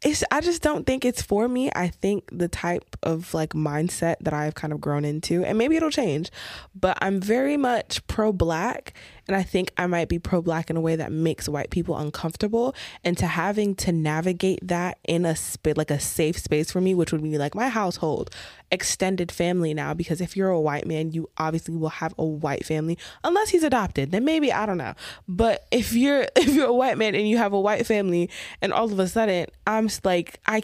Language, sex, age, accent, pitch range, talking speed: English, female, 20-39, American, 165-230 Hz, 225 wpm